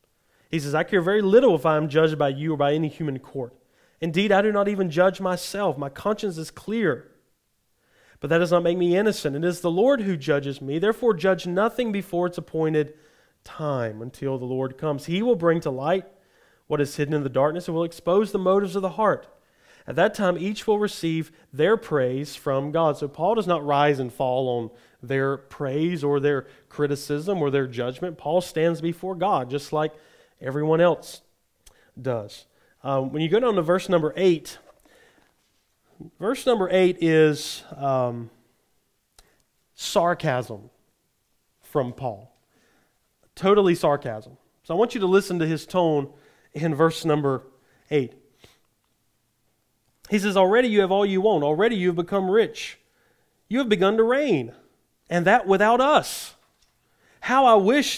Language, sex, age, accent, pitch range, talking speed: English, male, 30-49, American, 140-190 Hz, 170 wpm